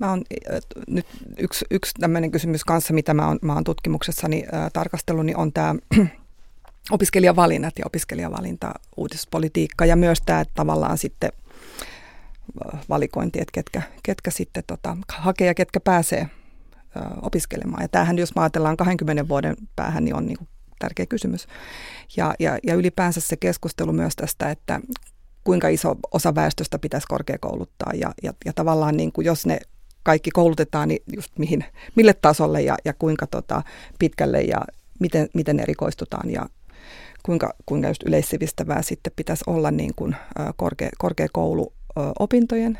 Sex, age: female, 30-49